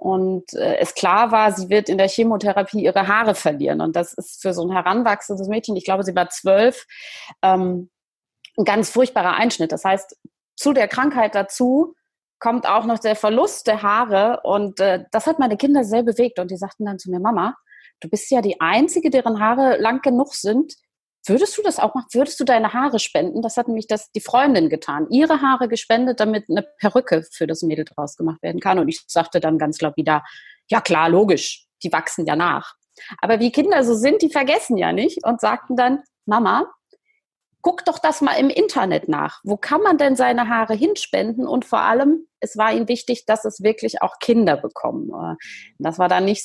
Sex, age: female, 30-49